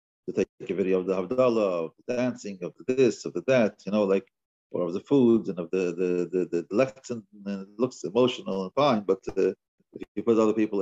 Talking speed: 240 wpm